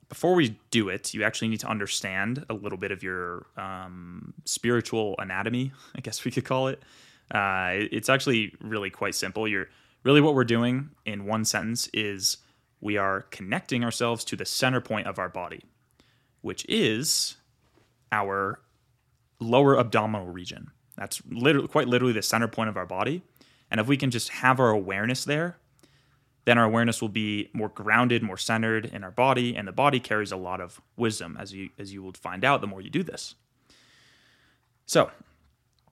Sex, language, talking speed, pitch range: male, English, 175 wpm, 100-130 Hz